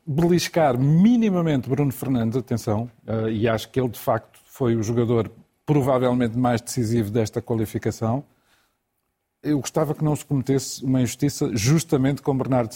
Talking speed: 140 wpm